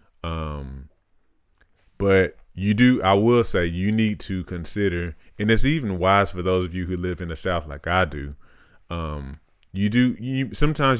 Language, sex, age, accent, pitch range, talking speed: English, male, 30-49, American, 80-95 Hz, 175 wpm